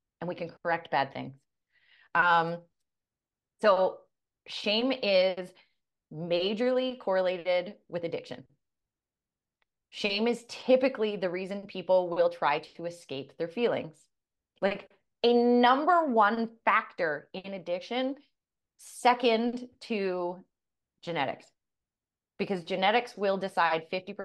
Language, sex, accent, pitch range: English, female, American, 160-210 Hz